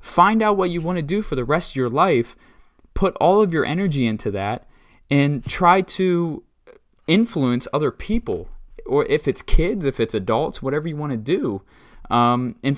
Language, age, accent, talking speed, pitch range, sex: English, 20-39, American, 190 wpm, 120-170 Hz, male